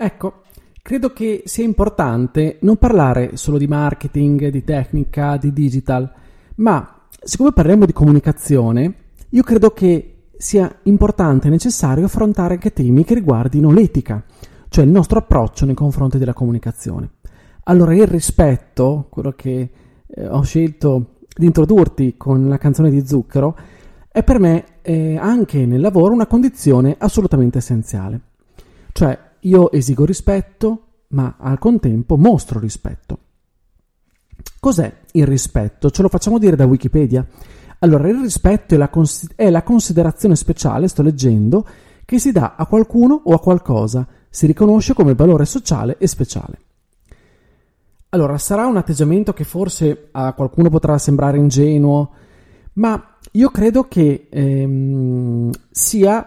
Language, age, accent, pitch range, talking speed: Italian, 30-49, native, 135-195 Hz, 135 wpm